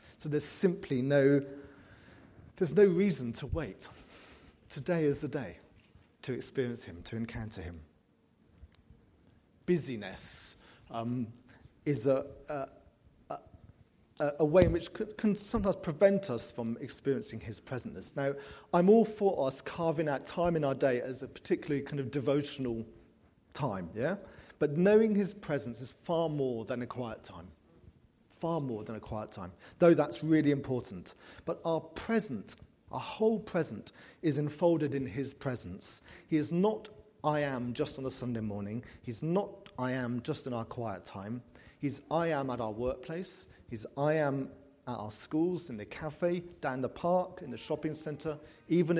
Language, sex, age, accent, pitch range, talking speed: English, male, 40-59, British, 115-160 Hz, 160 wpm